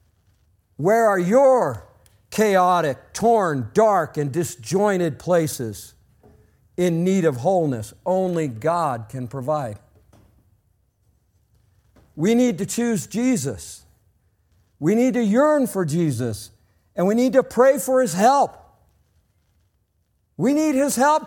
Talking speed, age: 115 wpm, 50-69